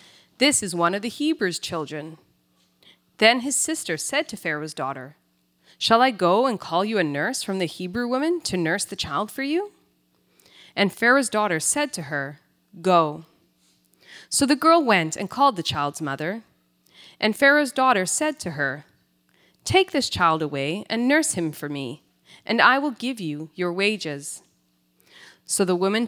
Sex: female